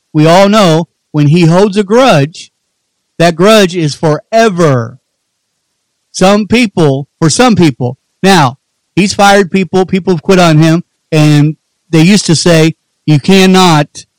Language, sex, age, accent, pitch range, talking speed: English, male, 50-69, American, 150-195 Hz, 140 wpm